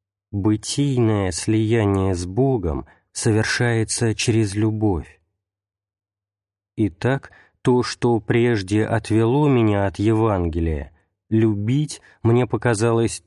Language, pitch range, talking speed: Russian, 100-115 Hz, 80 wpm